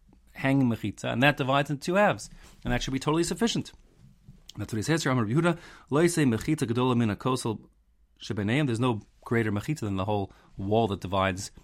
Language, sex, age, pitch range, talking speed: English, male, 30-49, 100-135 Hz, 145 wpm